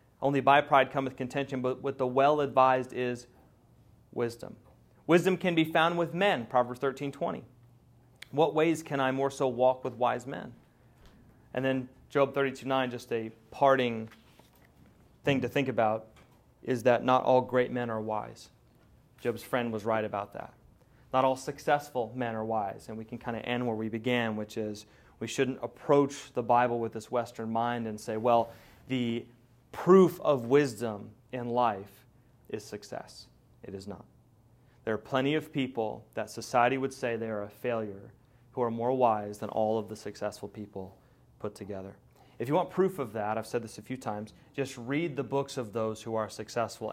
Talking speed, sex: 185 wpm, male